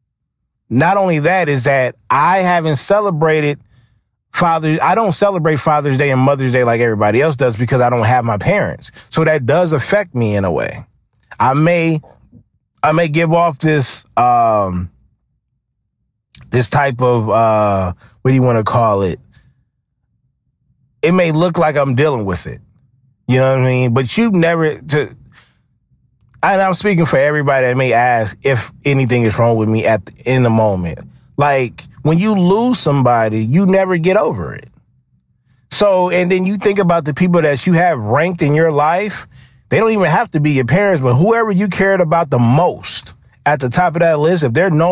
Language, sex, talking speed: English, male, 185 wpm